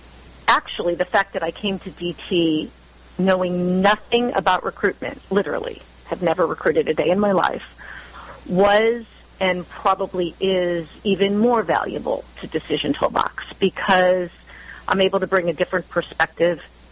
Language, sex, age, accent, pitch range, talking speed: English, female, 40-59, American, 160-190 Hz, 140 wpm